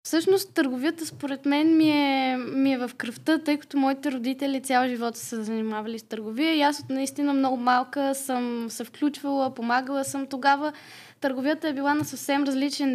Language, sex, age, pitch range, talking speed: Bulgarian, female, 10-29, 240-290 Hz, 175 wpm